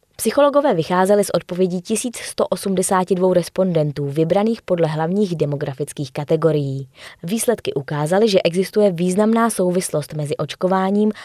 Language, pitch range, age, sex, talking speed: Czech, 160-200 Hz, 20-39, female, 100 wpm